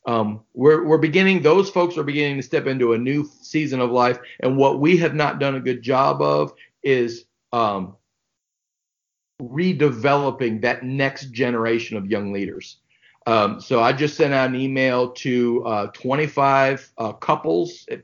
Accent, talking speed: American, 160 wpm